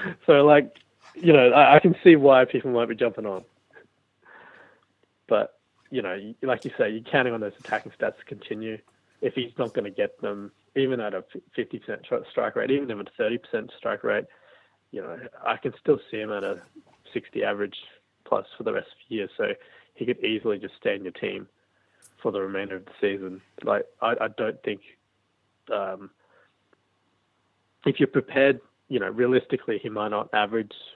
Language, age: English, 20-39